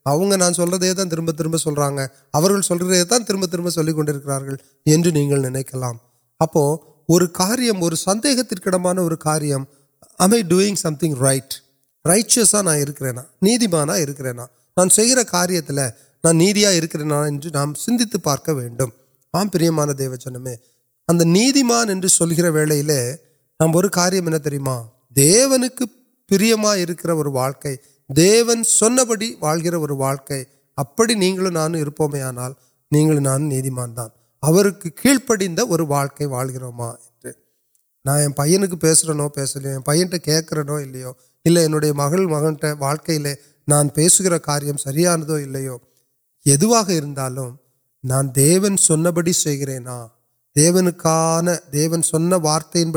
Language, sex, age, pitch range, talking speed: Urdu, male, 30-49, 135-180 Hz, 55 wpm